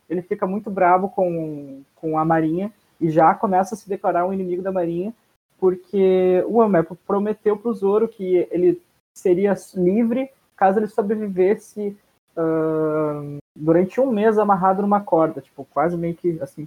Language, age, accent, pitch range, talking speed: Portuguese, 20-39, Brazilian, 170-210 Hz, 160 wpm